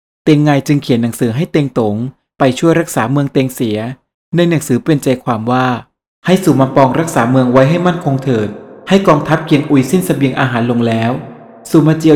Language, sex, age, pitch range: Thai, male, 20-39, 120-145 Hz